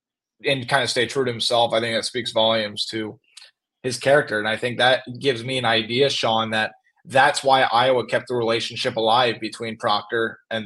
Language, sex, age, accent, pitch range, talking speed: English, male, 20-39, American, 115-140 Hz, 195 wpm